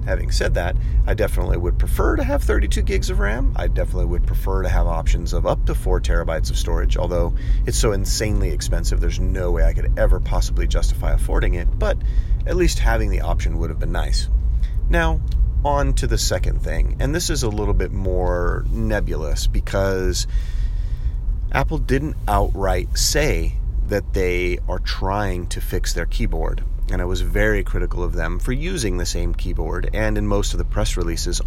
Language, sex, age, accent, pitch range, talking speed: English, male, 30-49, American, 85-105 Hz, 185 wpm